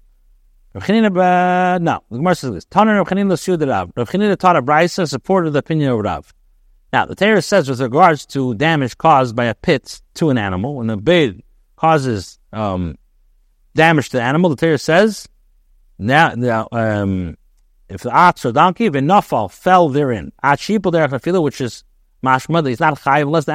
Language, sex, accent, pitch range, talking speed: English, male, American, 120-175 Hz, 170 wpm